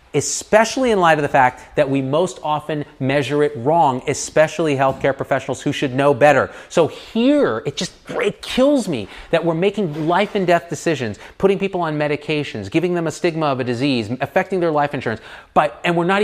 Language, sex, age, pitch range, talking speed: English, male, 30-49, 120-170 Hz, 195 wpm